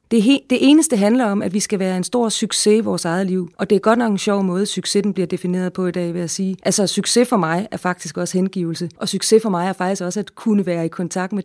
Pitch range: 190-225 Hz